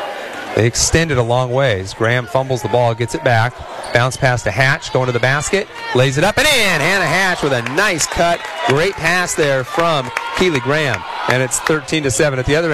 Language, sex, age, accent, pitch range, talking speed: English, male, 40-59, American, 125-155 Hz, 205 wpm